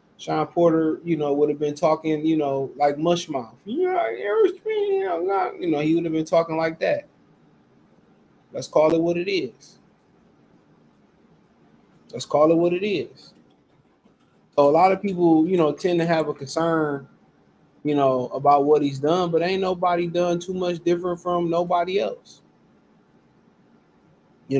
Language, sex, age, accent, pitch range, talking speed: English, male, 20-39, American, 155-180 Hz, 155 wpm